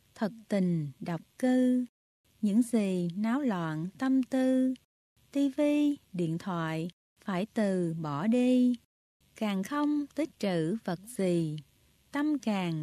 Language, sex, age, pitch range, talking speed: Vietnamese, female, 20-39, 180-265 Hz, 115 wpm